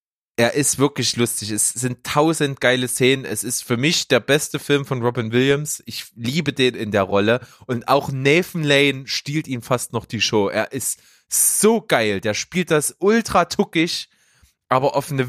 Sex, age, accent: male, 20-39, German